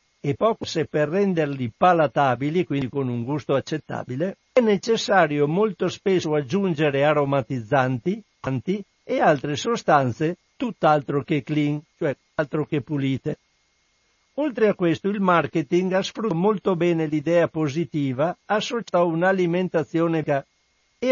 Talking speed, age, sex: 120 wpm, 60-79, male